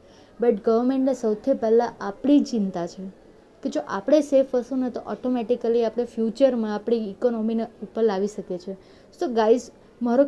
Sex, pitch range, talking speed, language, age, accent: female, 210-260 Hz, 150 wpm, Gujarati, 20-39, native